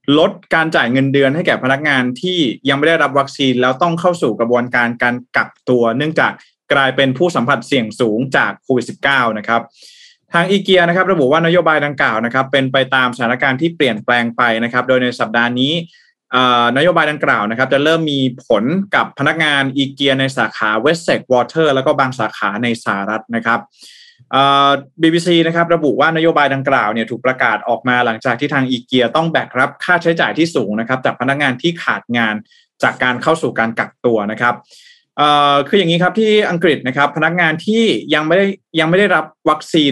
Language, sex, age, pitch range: Thai, male, 20-39, 125-165 Hz